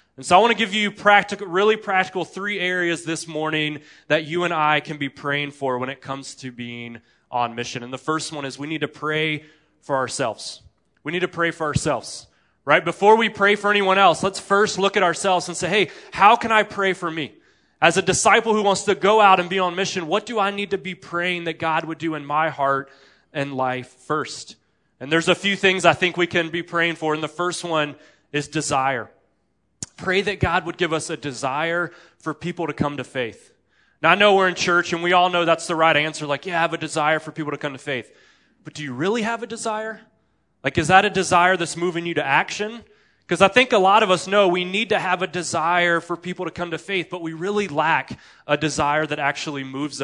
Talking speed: 240 wpm